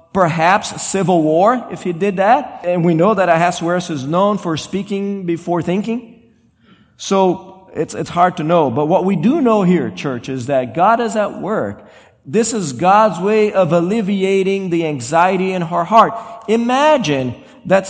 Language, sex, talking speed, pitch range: English, male, 170 wpm, 160-210 Hz